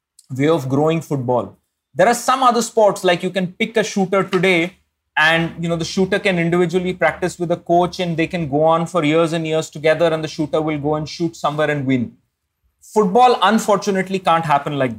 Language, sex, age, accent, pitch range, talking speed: English, male, 30-49, Indian, 145-180 Hz, 210 wpm